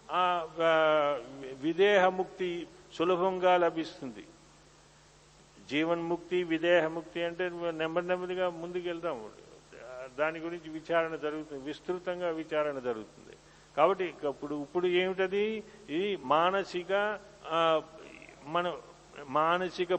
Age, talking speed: 50-69, 70 wpm